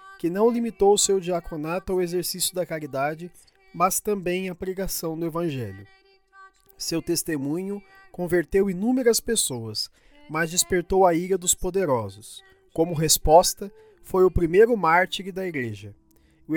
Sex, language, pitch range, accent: male, Portuguese, 170-220 Hz, Brazilian